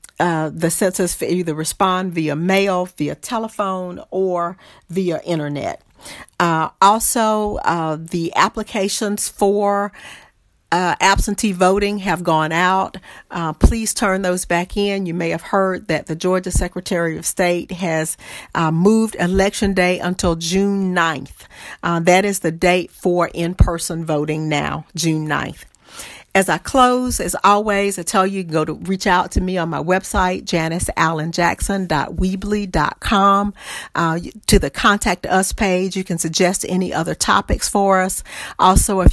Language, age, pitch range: English, 50-69, 165-195 Hz